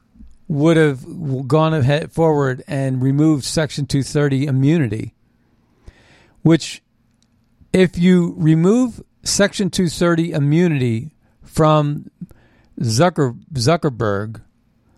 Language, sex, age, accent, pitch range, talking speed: English, male, 50-69, American, 115-155 Hz, 75 wpm